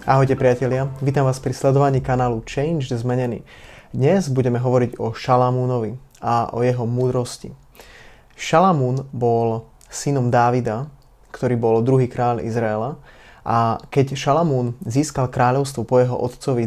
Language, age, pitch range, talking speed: Slovak, 20-39, 120-135 Hz, 125 wpm